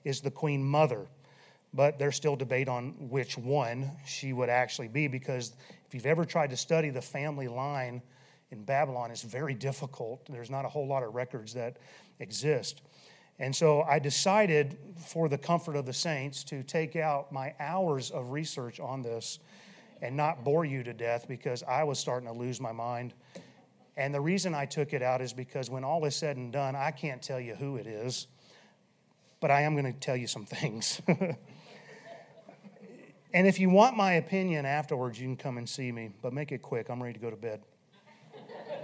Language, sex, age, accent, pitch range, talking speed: English, male, 40-59, American, 130-160 Hz, 195 wpm